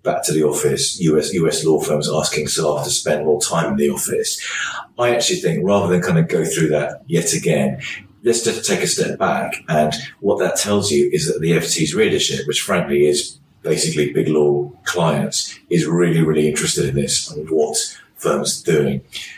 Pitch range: 75-80 Hz